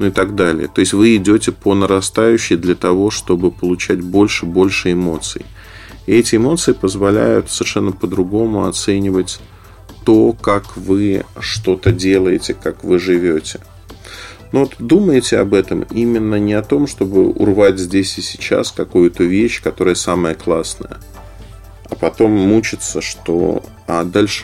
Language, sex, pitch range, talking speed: Russian, male, 95-110 Hz, 135 wpm